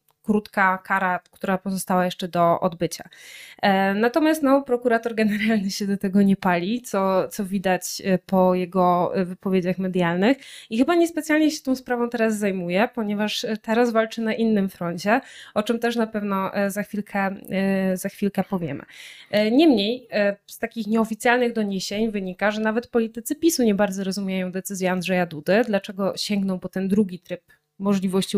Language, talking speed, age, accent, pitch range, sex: Polish, 150 wpm, 20-39, native, 190-230 Hz, female